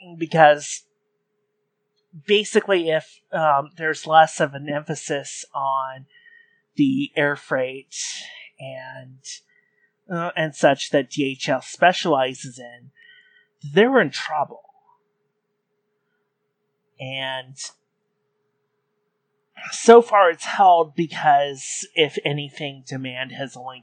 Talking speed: 90 wpm